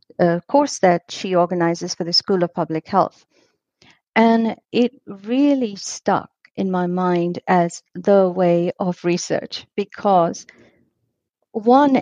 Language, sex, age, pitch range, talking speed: English, female, 50-69, 175-210 Hz, 120 wpm